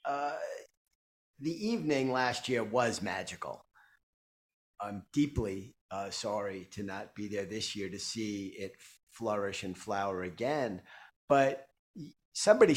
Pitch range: 100-120 Hz